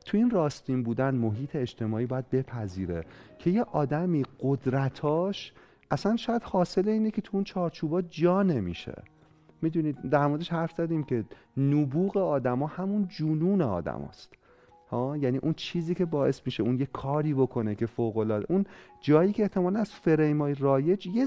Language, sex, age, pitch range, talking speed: Persian, male, 40-59, 115-165 Hz, 155 wpm